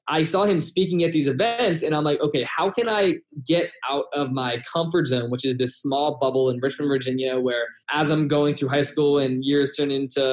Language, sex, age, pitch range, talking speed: English, male, 20-39, 130-160 Hz, 225 wpm